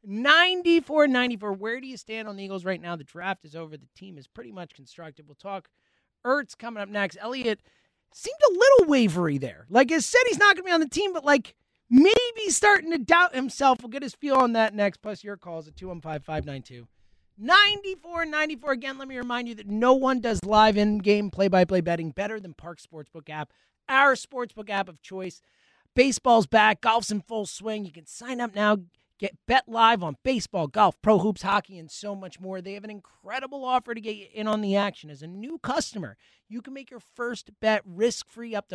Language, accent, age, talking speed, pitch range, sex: English, American, 30-49, 220 wpm, 185-250 Hz, male